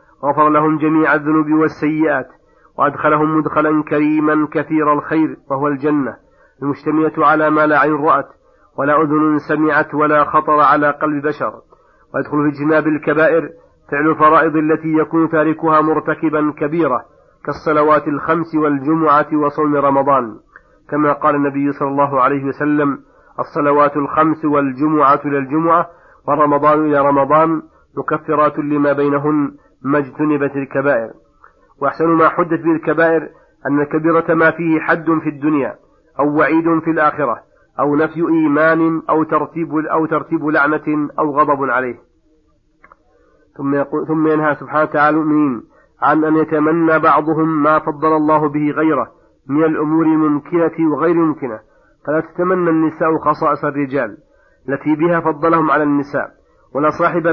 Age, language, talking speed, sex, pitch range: 50-69, Arabic, 125 wpm, male, 145-160 Hz